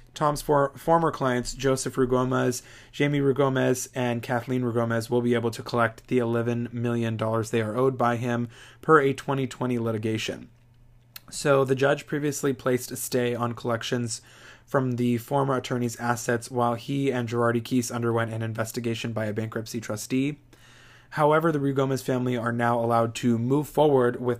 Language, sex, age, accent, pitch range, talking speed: English, male, 20-39, American, 115-130 Hz, 155 wpm